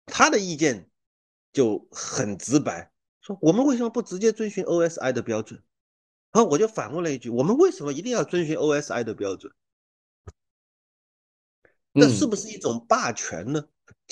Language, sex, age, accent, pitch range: Chinese, male, 30-49, native, 110-160 Hz